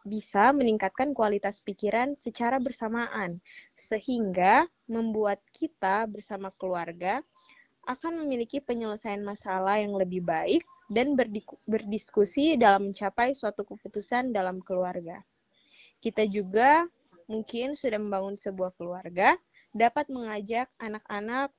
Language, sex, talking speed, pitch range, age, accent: Indonesian, female, 100 wpm, 195-240 Hz, 20-39, native